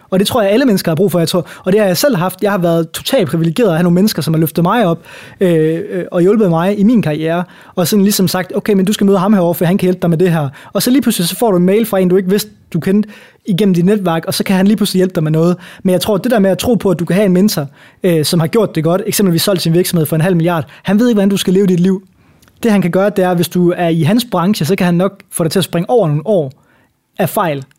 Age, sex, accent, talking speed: 20-39, male, native, 330 wpm